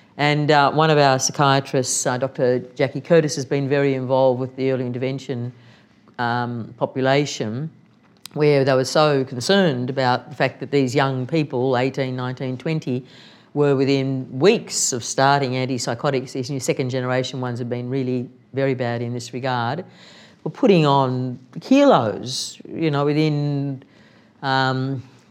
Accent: Australian